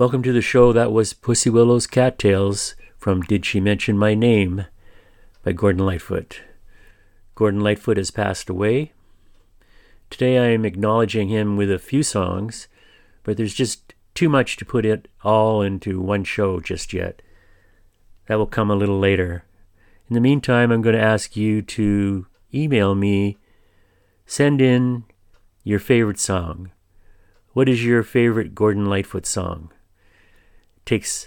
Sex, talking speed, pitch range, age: male, 145 wpm, 95-115 Hz, 40-59